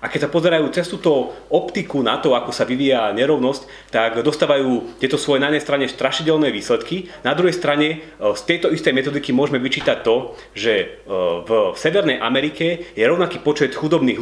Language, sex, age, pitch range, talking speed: Slovak, male, 30-49, 125-165 Hz, 170 wpm